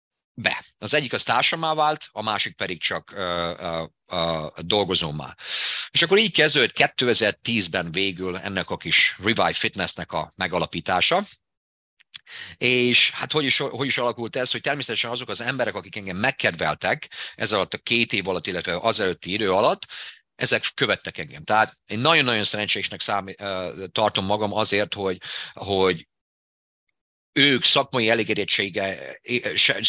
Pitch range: 100-130 Hz